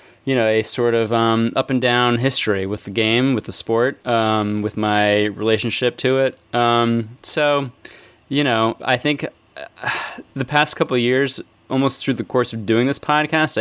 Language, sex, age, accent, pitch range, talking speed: English, male, 20-39, American, 105-125 Hz, 180 wpm